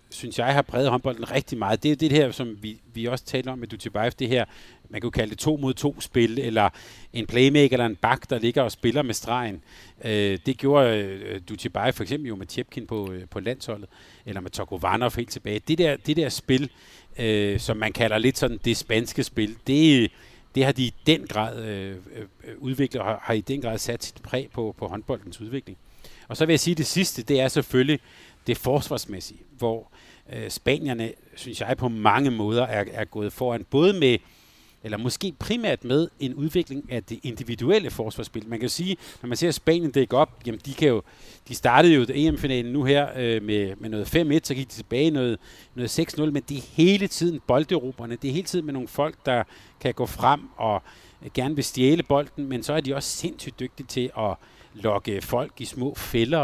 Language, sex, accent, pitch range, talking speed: Danish, male, native, 110-140 Hz, 205 wpm